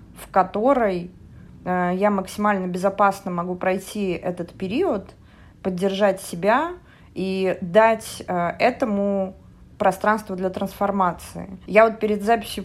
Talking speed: 110 wpm